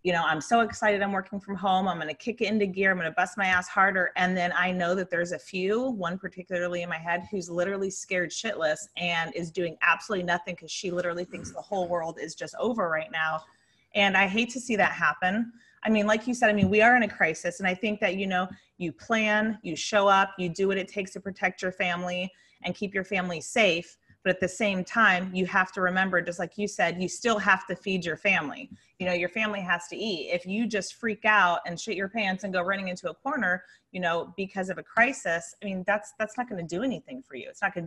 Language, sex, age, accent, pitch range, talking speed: English, female, 30-49, American, 175-200 Hz, 255 wpm